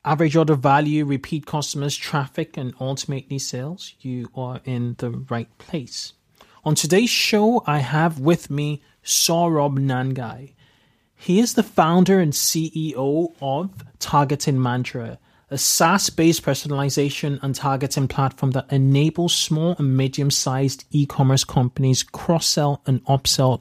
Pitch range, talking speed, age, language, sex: 130-155 Hz, 125 wpm, 30-49, English, male